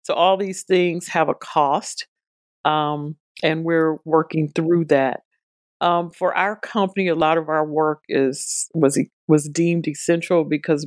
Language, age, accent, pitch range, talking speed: English, 50-69, American, 150-180 Hz, 155 wpm